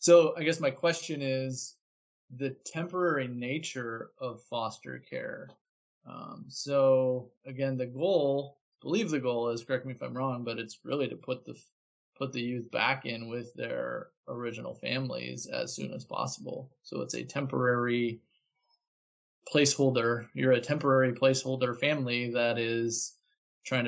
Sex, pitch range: male, 115-135 Hz